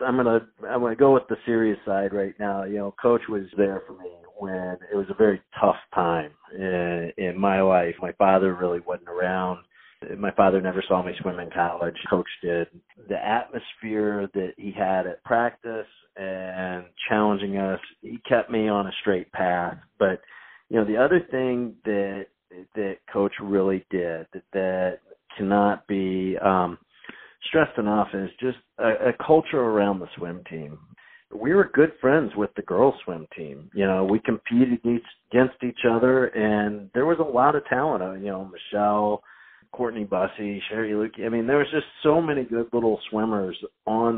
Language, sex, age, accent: English, male, 40-59, American